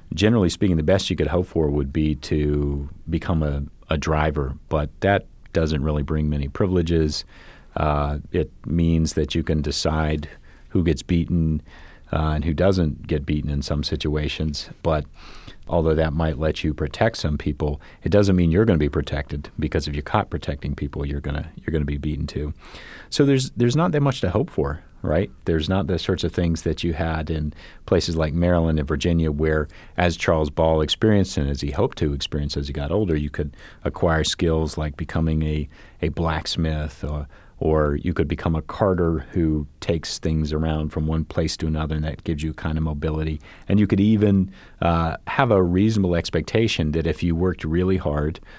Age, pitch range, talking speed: 40-59, 75-85 Hz, 195 wpm